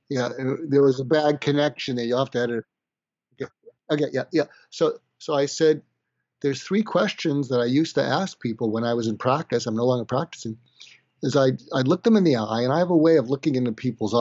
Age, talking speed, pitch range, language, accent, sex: 50-69, 235 wpm, 120-145 Hz, English, American, male